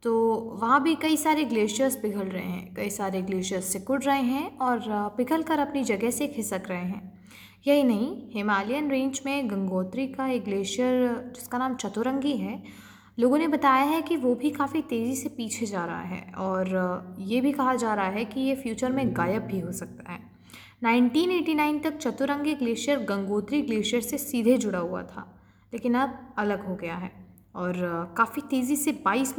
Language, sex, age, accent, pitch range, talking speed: Hindi, female, 20-39, native, 210-280 Hz, 180 wpm